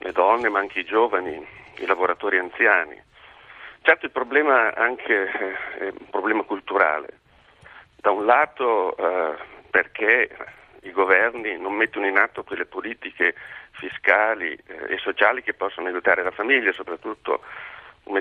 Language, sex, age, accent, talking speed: Italian, male, 50-69, native, 140 wpm